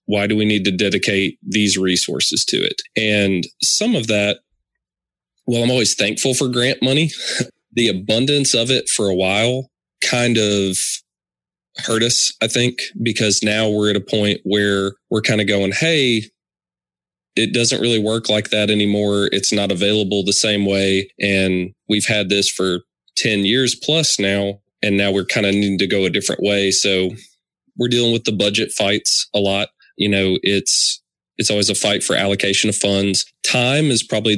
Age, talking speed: 20-39, 180 wpm